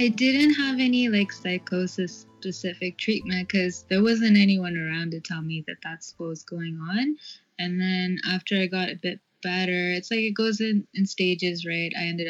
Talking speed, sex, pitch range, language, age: 195 wpm, female, 170-200 Hz, English, 20-39